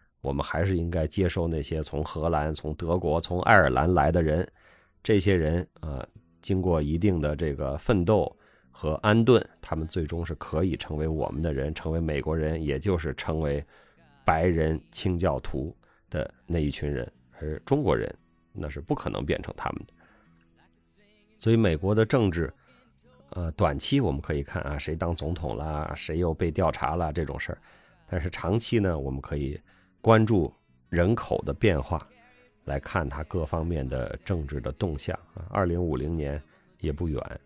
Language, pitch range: Chinese, 75-90 Hz